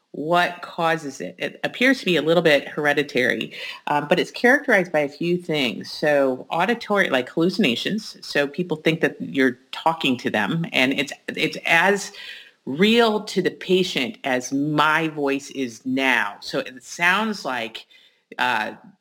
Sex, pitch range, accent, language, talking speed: female, 140-185 Hz, American, English, 155 wpm